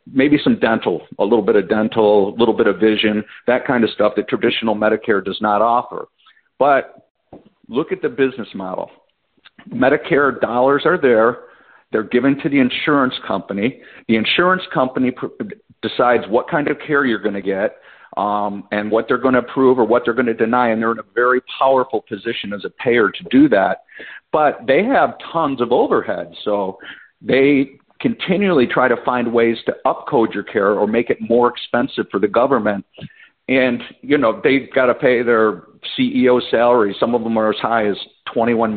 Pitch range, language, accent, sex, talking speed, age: 110-140 Hz, English, American, male, 185 wpm, 50-69